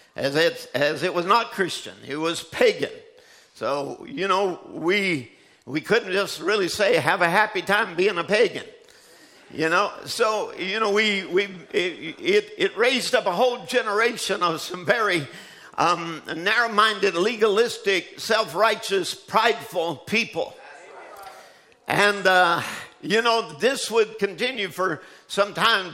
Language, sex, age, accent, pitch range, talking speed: English, male, 50-69, American, 175-230 Hz, 135 wpm